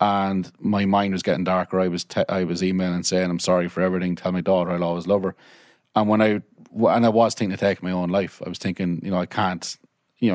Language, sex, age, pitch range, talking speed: English, male, 30-49, 90-105 Hz, 275 wpm